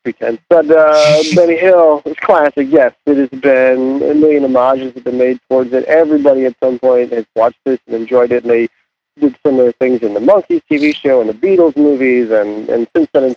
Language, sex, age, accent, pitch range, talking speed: English, male, 40-59, American, 125-160 Hz, 210 wpm